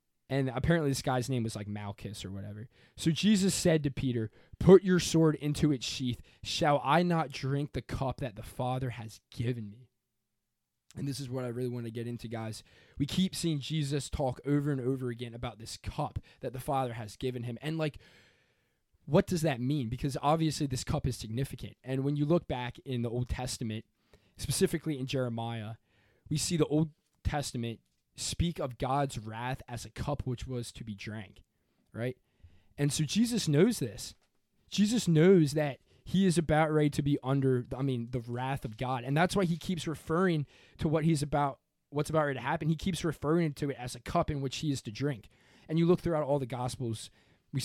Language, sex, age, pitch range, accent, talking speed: English, male, 20-39, 115-150 Hz, American, 205 wpm